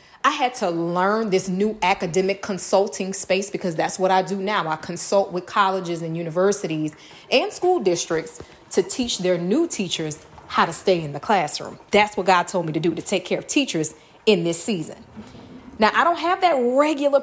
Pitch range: 185-240 Hz